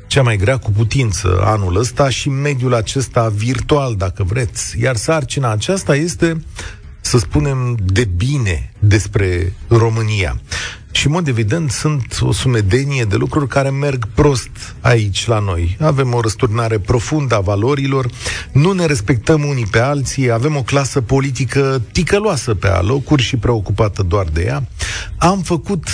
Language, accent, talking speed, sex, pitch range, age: Romanian, native, 150 wpm, male, 105-145 Hz, 40-59